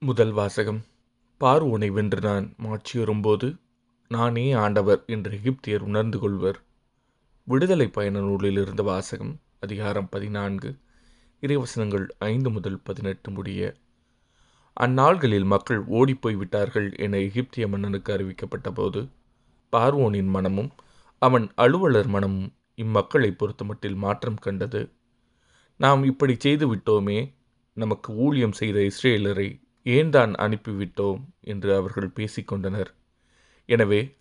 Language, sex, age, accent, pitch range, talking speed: Tamil, male, 30-49, native, 100-120 Hz, 100 wpm